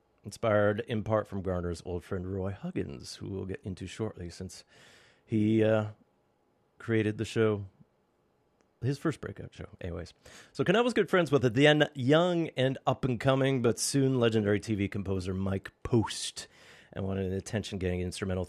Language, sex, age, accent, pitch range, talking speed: English, male, 30-49, American, 95-120 Hz, 155 wpm